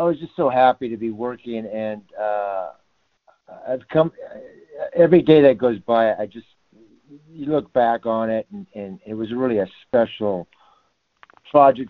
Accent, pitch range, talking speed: American, 95-115 Hz, 160 wpm